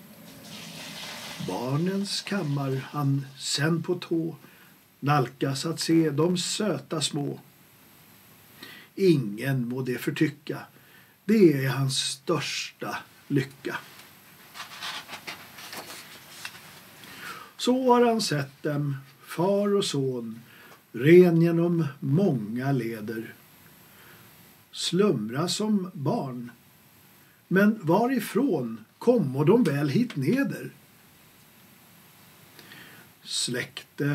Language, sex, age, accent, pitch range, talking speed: Swedish, male, 50-69, native, 140-180 Hz, 75 wpm